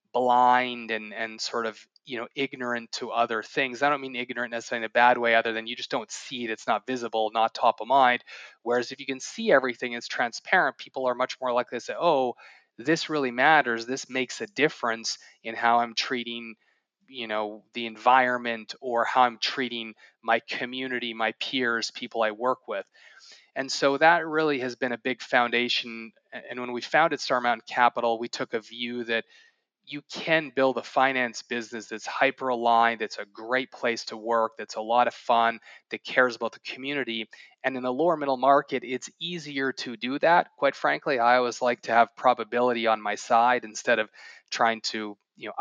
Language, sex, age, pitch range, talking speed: English, male, 20-39, 115-130 Hz, 200 wpm